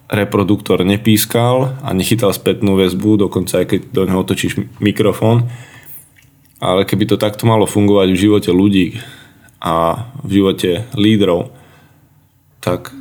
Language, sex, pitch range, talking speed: Slovak, male, 95-135 Hz, 125 wpm